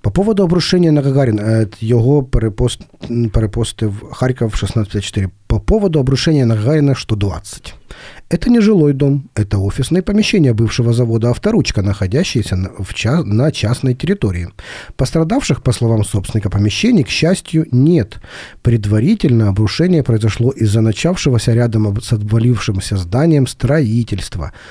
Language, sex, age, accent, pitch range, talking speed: Ukrainian, male, 40-59, native, 100-140 Hz, 120 wpm